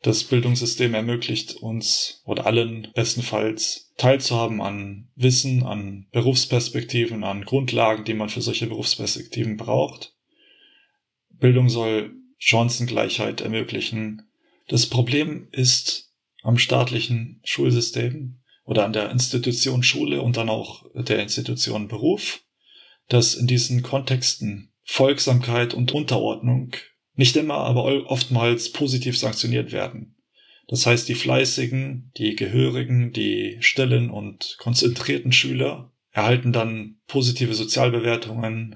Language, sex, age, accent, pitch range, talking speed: German, male, 20-39, German, 110-130 Hz, 110 wpm